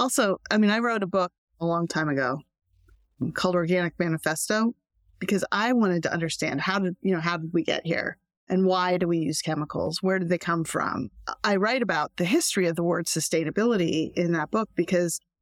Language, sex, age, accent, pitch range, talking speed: English, female, 30-49, American, 170-205 Hz, 200 wpm